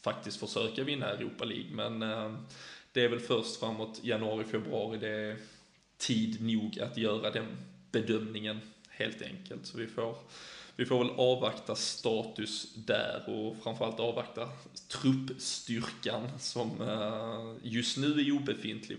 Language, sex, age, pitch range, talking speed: Swedish, male, 20-39, 110-120 Hz, 125 wpm